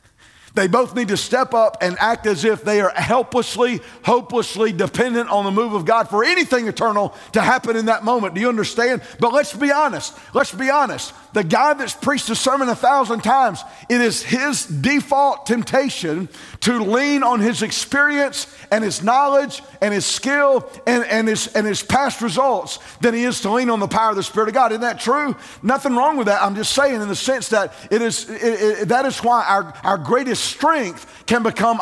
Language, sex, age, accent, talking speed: English, male, 50-69, American, 200 wpm